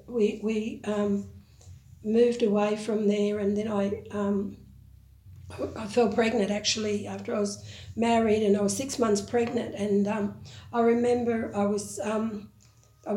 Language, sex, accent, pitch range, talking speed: English, female, Australian, 205-235 Hz, 150 wpm